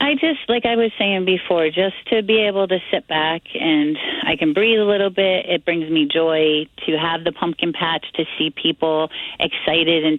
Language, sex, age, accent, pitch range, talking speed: English, female, 30-49, American, 160-210 Hz, 205 wpm